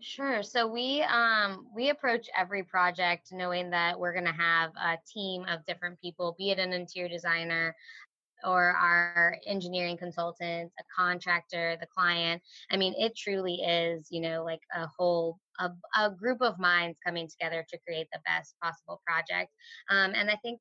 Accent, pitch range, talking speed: American, 170-190 Hz, 170 wpm